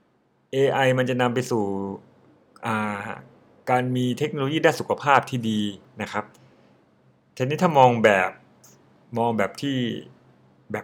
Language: Thai